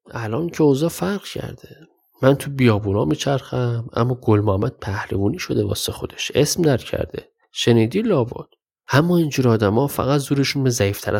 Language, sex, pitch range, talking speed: Persian, male, 115-170 Hz, 145 wpm